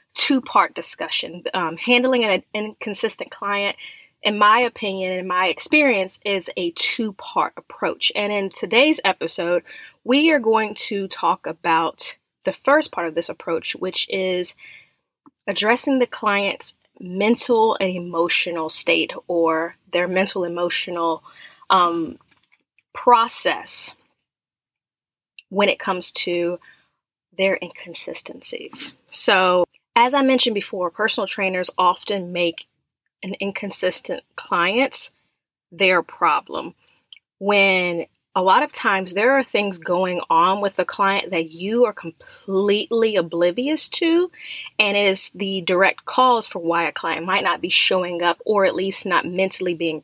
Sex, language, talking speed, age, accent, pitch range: female, English, 125 wpm, 20-39, American, 175-220 Hz